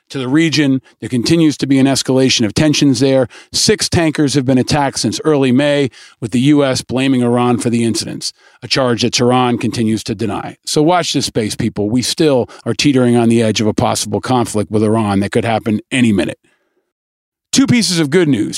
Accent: American